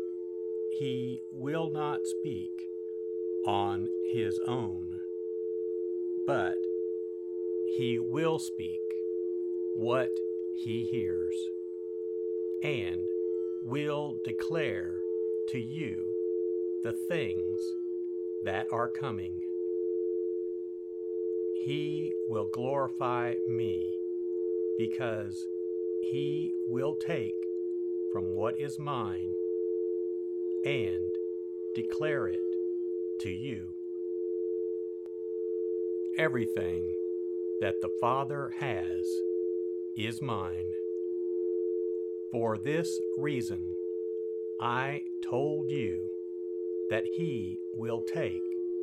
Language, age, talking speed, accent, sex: English, 60-79, 70 wpm, American, male